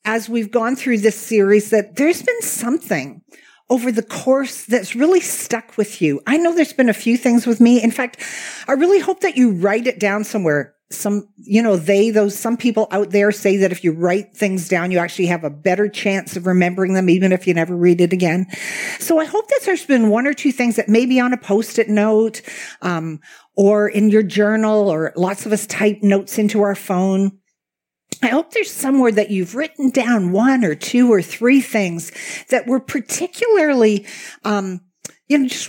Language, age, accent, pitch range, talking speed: English, 50-69, American, 195-255 Hz, 205 wpm